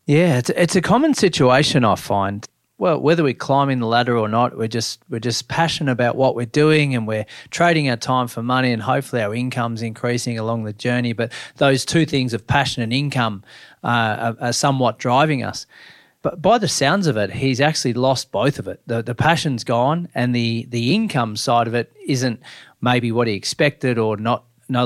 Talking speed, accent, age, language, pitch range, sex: 210 wpm, Australian, 30-49, English, 115-140 Hz, male